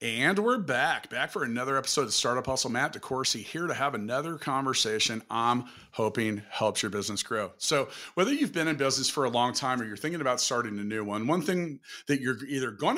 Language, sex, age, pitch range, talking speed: English, male, 40-59, 125-165 Hz, 215 wpm